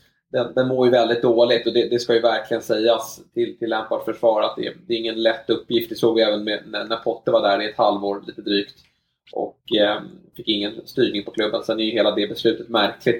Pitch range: 115-125 Hz